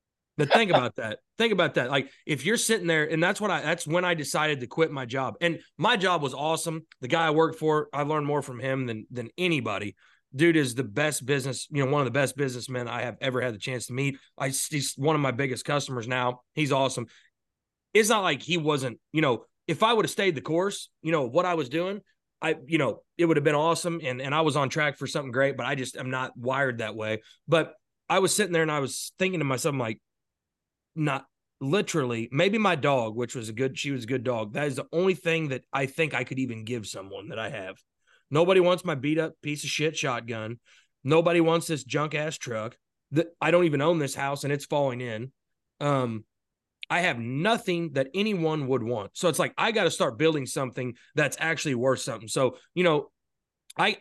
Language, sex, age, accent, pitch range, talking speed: English, male, 30-49, American, 130-165 Hz, 235 wpm